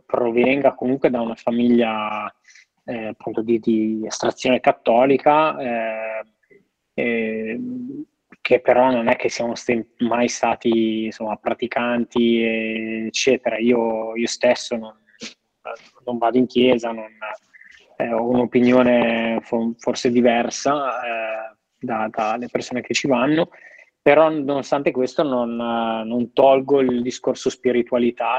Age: 20-39